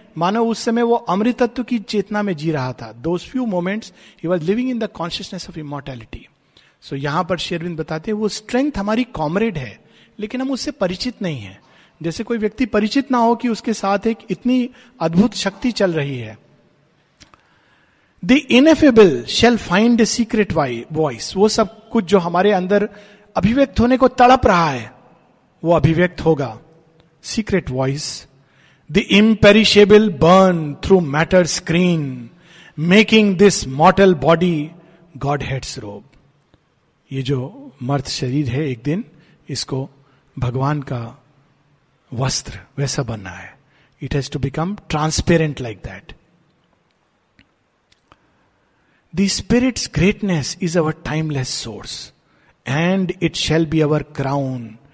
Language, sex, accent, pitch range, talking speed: Hindi, male, native, 140-210 Hz, 125 wpm